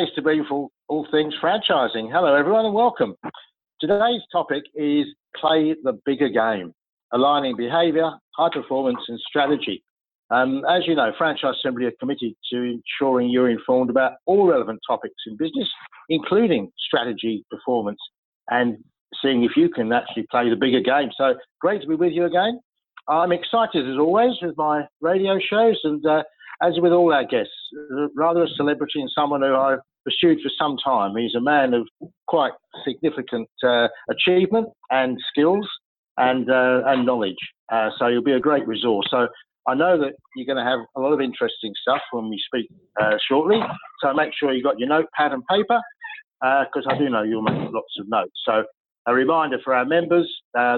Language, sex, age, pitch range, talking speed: English, male, 60-79, 120-165 Hz, 180 wpm